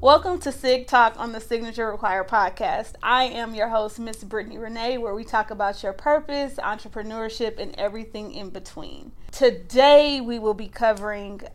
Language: English